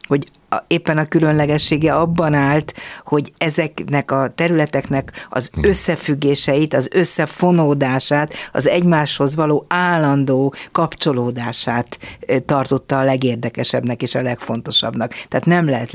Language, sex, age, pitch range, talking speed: Hungarian, female, 50-69, 130-155 Hz, 105 wpm